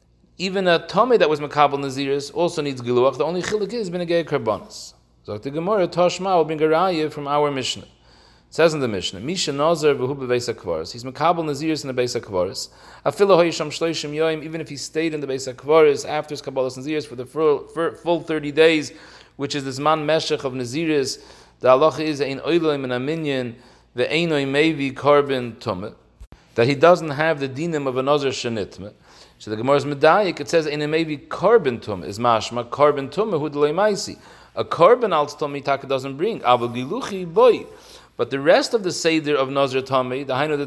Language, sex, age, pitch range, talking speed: English, male, 40-59, 135-170 Hz, 175 wpm